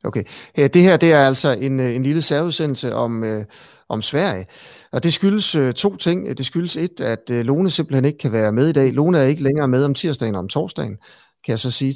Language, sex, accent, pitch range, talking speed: Danish, male, native, 110-140 Hz, 235 wpm